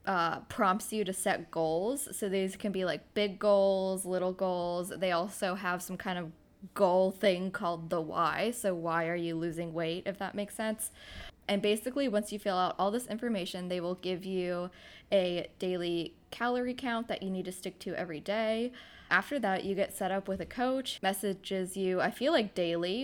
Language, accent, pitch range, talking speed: English, American, 175-205 Hz, 200 wpm